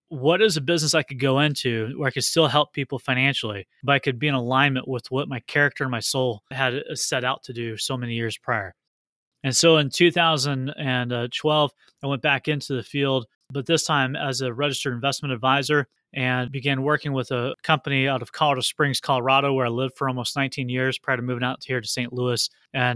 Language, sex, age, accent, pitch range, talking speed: English, male, 30-49, American, 130-150 Hz, 215 wpm